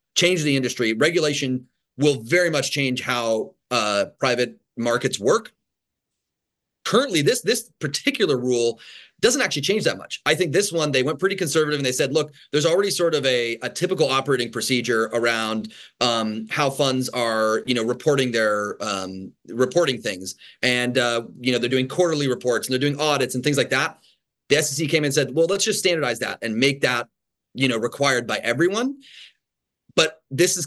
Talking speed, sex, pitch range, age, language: 180 wpm, male, 125-150 Hz, 30-49, English